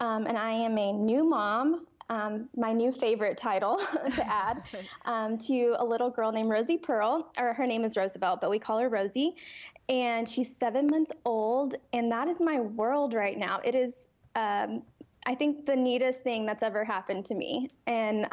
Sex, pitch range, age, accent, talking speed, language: female, 220-265 Hz, 10-29, American, 190 wpm, English